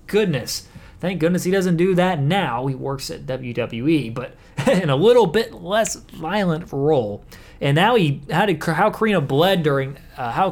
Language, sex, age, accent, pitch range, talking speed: English, male, 20-39, American, 140-175 Hz, 175 wpm